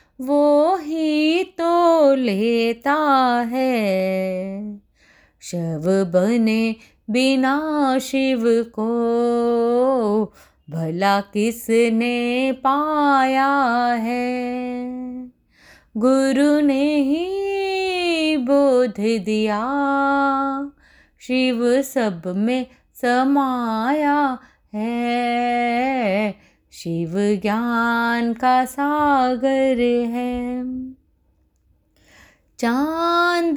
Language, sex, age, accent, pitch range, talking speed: Hindi, female, 30-49, native, 235-295 Hz, 55 wpm